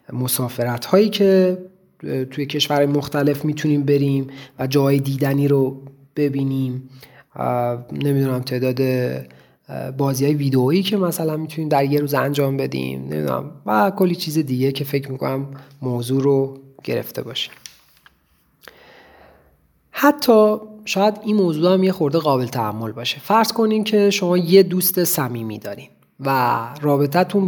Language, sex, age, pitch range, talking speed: Persian, male, 30-49, 130-175 Hz, 125 wpm